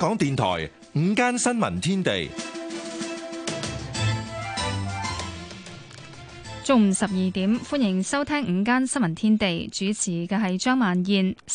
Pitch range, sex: 180-240 Hz, female